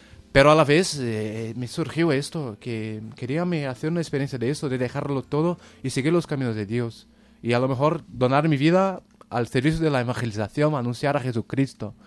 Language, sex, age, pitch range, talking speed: Spanish, male, 20-39, 115-145 Hz, 195 wpm